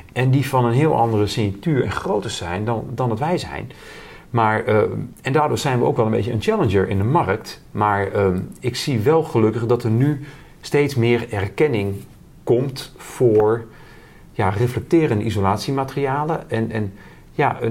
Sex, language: male, Dutch